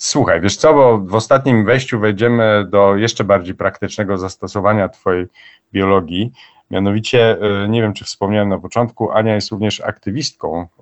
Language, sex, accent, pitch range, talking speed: Polish, male, native, 95-110 Hz, 145 wpm